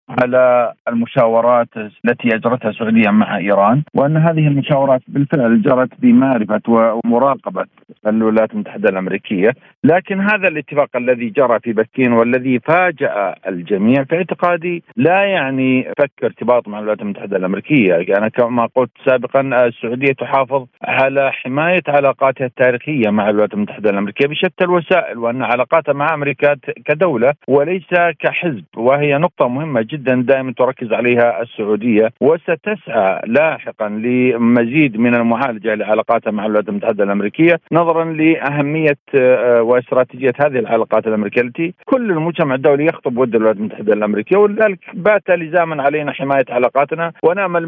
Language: Arabic